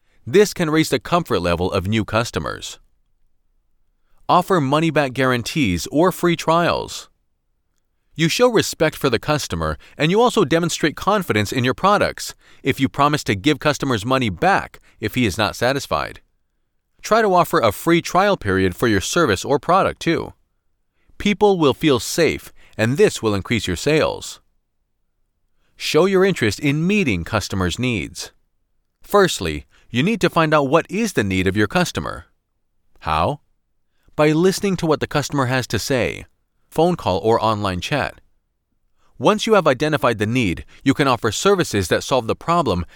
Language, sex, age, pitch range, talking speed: English, male, 40-59, 100-165 Hz, 160 wpm